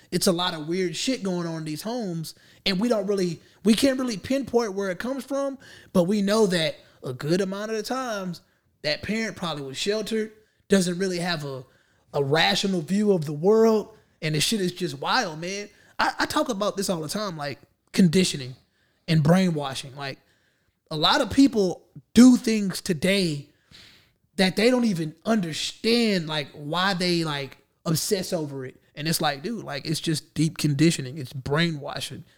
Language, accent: English, American